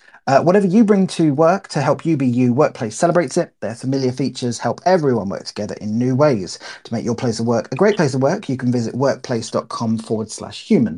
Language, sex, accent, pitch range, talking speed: English, male, British, 120-165 Hz, 230 wpm